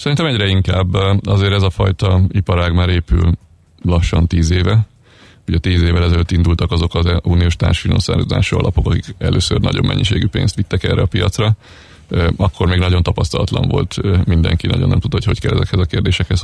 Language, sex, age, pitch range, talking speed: Hungarian, male, 30-49, 90-115 Hz, 170 wpm